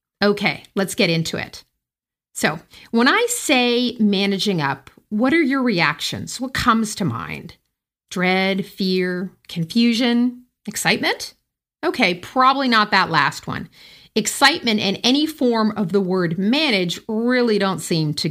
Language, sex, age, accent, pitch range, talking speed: English, female, 40-59, American, 185-250 Hz, 135 wpm